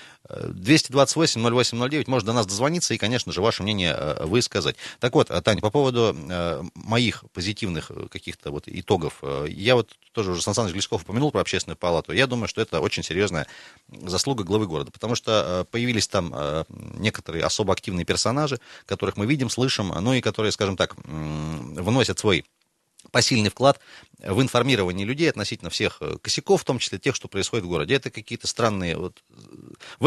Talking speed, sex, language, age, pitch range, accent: 165 wpm, male, Russian, 30-49, 95-130 Hz, native